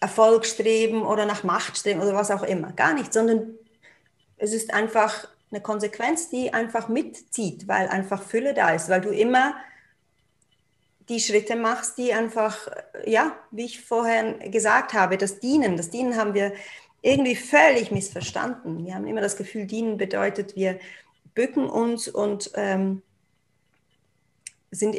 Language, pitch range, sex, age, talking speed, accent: German, 205-250 Hz, female, 40-59, 150 wpm, German